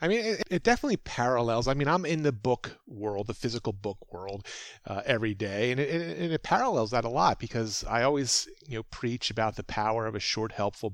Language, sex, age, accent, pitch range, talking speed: English, male, 30-49, American, 110-155 Hz, 225 wpm